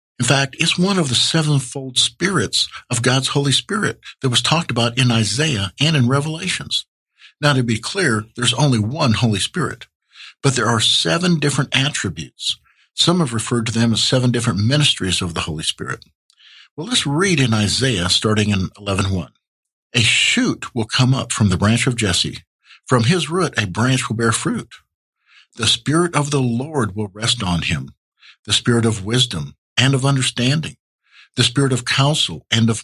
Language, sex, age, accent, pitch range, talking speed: English, male, 60-79, American, 110-140 Hz, 175 wpm